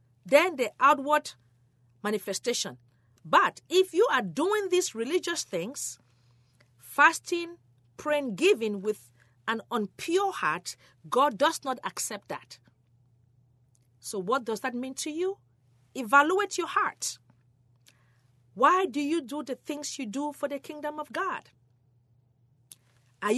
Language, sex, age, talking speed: English, female, 40-59, 125 wpm